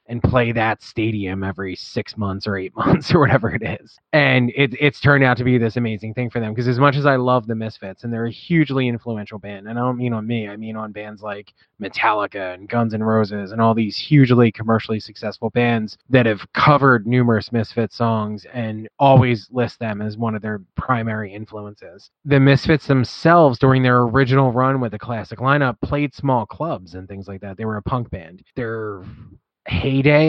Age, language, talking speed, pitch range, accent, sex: 20-39, English, 205 wpm, 110-130 Hz, American, male